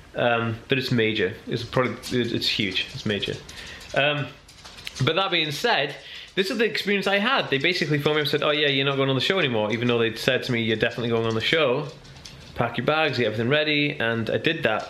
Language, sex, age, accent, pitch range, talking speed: English, male, 20-39, British, 115-140 Hz, 240 wpm